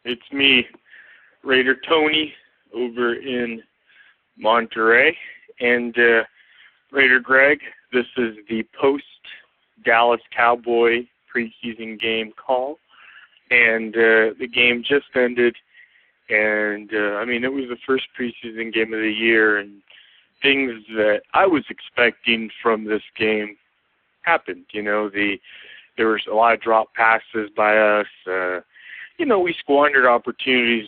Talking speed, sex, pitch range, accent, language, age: 125 wpm, male, 110-135 Hz, American, English, 20-39